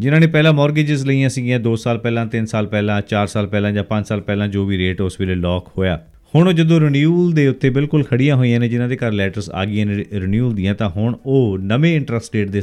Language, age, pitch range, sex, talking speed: Punjabi, 40-59, 95-135 Hz, male, 240 wpm